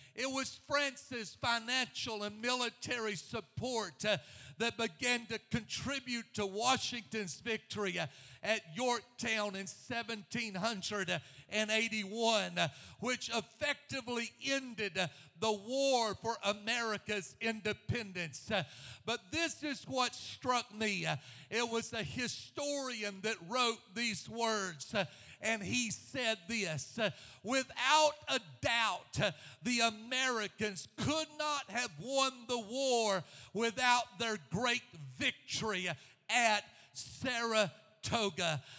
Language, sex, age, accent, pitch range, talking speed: English, male, 50-69, American, 195-245 Hz, 105 wpm